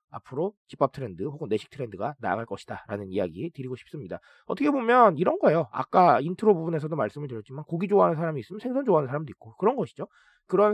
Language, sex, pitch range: Korean, male, 140-230 Hz